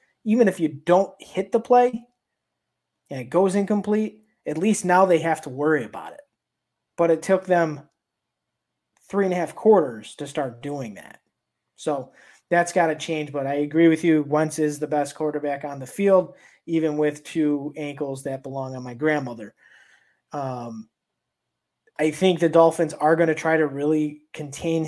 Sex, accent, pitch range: male, American, 145-170 Hz